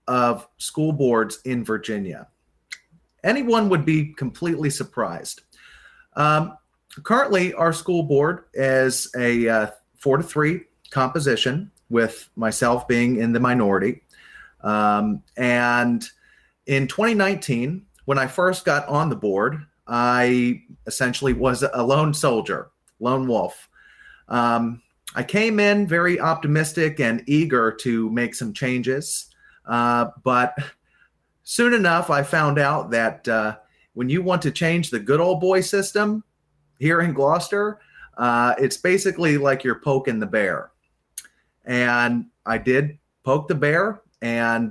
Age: 30-49